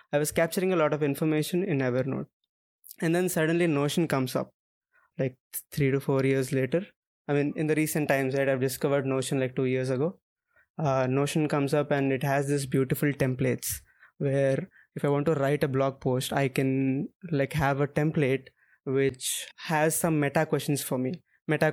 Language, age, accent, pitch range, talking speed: English, 20-39, Indian, 135-150 Hz, 190 wpm